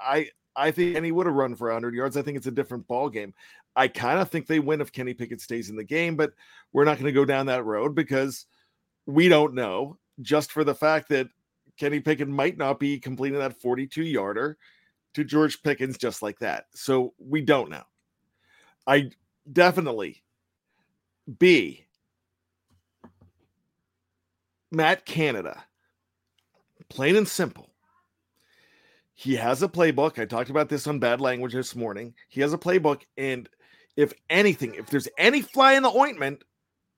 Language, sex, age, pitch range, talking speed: English, male, 50-69, 130-165 Hz, 165 wpm